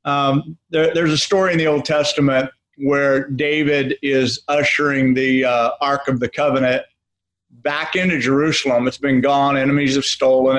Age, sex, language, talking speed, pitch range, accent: 50-69, male, English, 155 wpm, 135-165 Hz, American